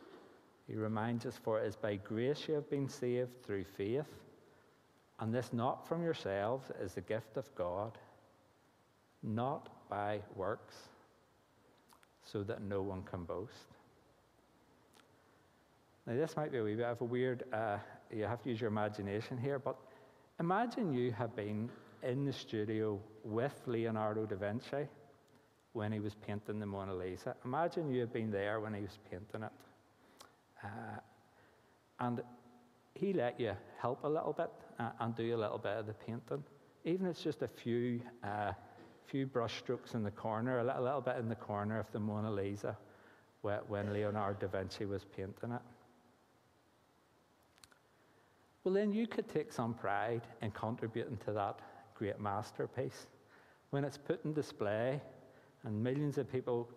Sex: male